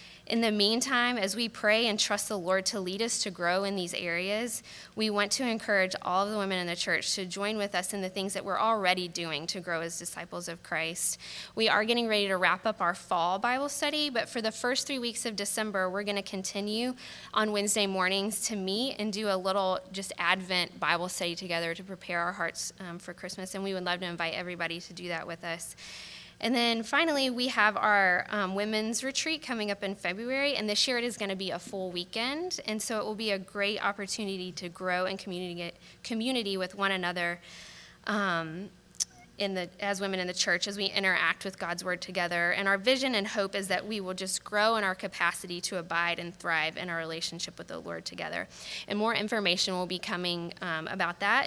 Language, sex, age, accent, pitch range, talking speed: English, female, 10-29, American, 175-215 Hz, 225 wpm